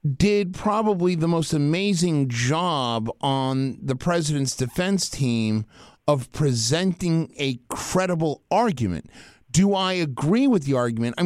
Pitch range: 140-185 Hz